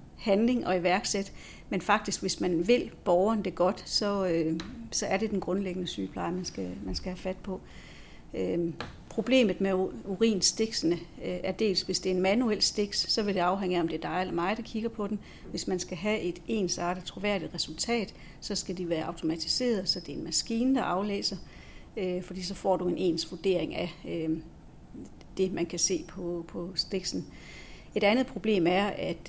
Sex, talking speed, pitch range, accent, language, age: female, 195 wpm, 175-205 Hz, native, Danish, 60-79